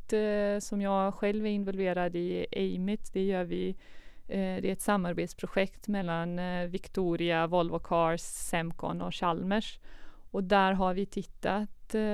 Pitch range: 185-210 Hz